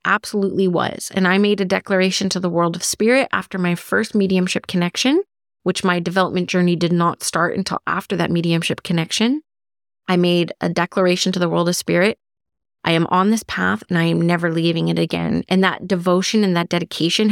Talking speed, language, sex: 195 wpm, English, female